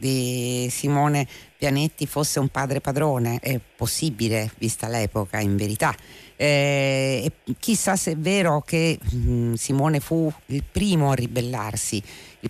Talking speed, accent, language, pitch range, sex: 135 wpm, native, Italian, 115-155 Hz, female